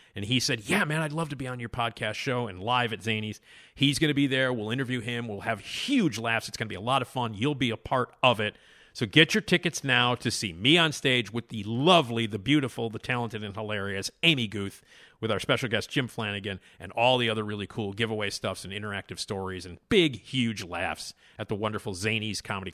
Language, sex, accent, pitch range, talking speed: English, male, American, 105-140 Hz, 235 wpm